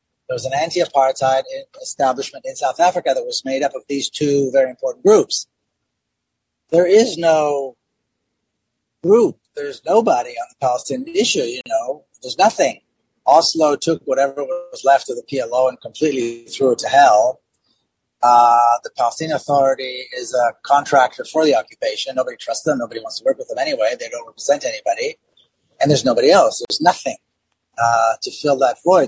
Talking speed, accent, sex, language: 165 wpm, American, male, English